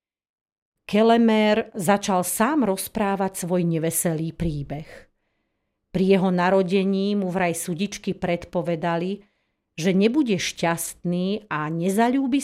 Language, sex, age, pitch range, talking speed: Slovak, female, 40-59, 165-205 Hz, 90 wpm